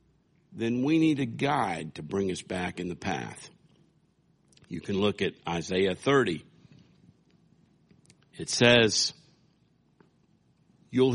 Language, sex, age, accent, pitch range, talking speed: English, male, 60-79, American, 105-165 Hz, 115 wpm